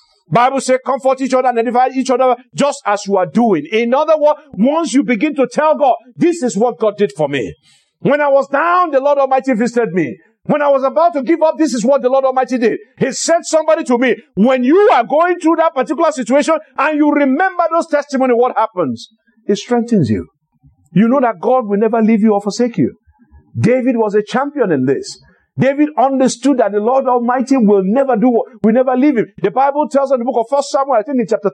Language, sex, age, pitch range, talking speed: English, male, 50-69, 230-300 Hz, 230 wpm